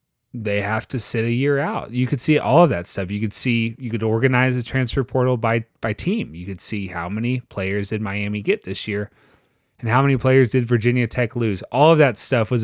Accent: American